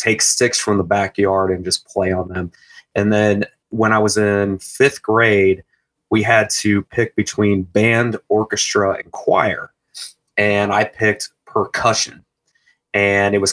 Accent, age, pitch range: American, 30-49, 100-115 Hz